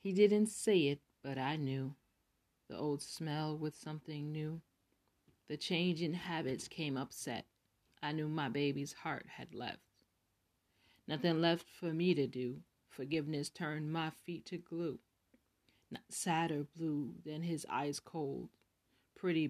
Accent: American